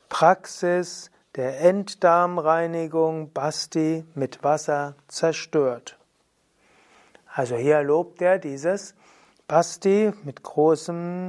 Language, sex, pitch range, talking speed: German, male, 150-190 Hz, 80 wpm